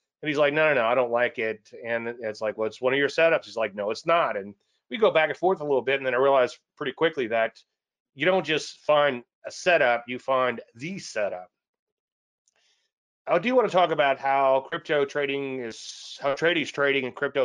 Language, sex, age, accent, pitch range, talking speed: English, male, 30-49, American, 125-165 Hz, 225 wpm